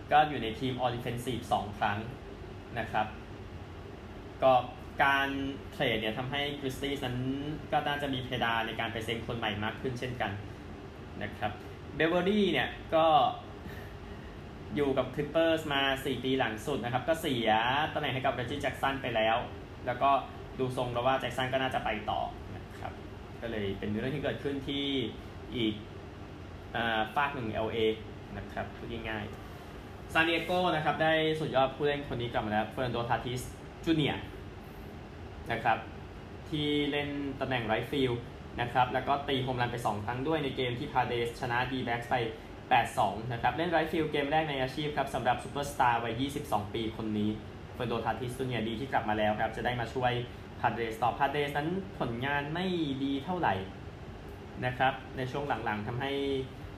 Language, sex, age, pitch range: Thai, male, 20-39, 105-135 Hz